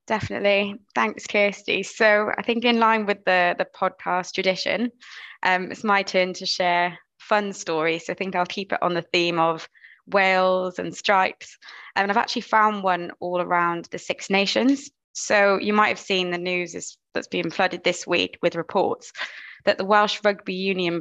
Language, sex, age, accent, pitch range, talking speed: English, female, 20-39, British, 170-200 Hz, 175 wpm